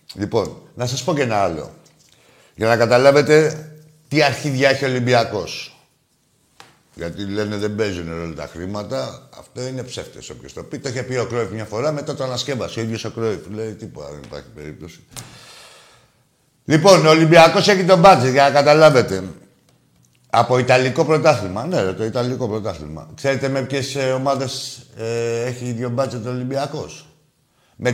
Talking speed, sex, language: 160 wpm, male, Greek